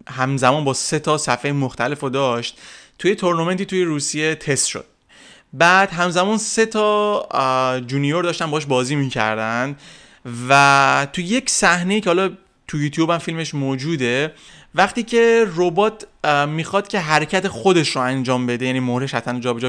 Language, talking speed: Persian, 145 wpm